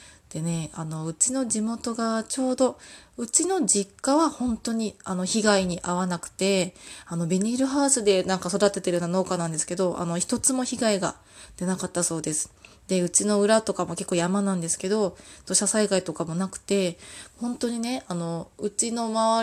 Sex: female